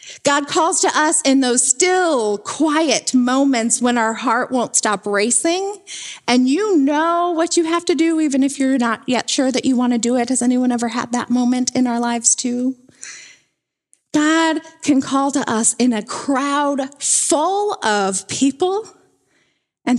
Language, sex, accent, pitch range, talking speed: English, female, American, 225-290 Hz, 170 wpm